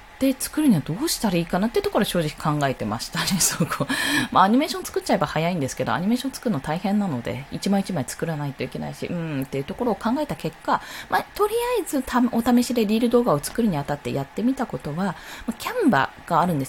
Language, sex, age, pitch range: Japanese, female, 20-39, 155-255 Hz